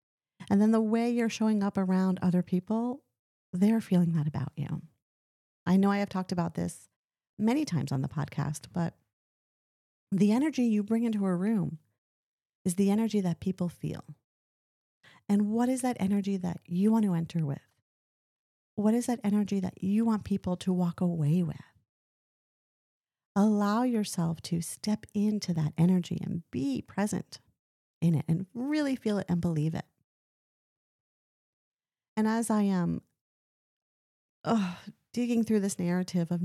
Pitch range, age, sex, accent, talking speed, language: 150-205 Hz, 40-59, female, American, 150 wpm, English